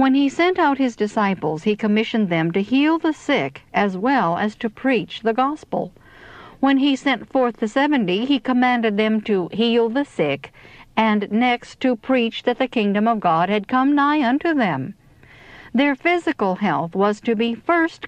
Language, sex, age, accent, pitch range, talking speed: English, female, 60-79, American, 195-260 Hz, 180 wpm